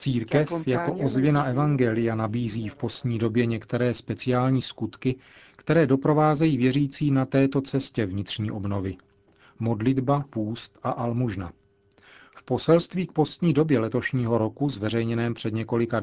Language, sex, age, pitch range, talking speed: Czech, male, 40-59, 110-135 Hz, 125 wpm